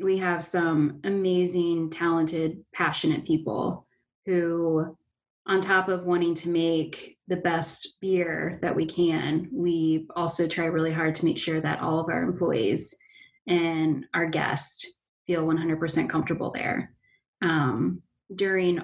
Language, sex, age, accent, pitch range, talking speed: English, female, 20-39, American, 160-180 Hz, 135 wpm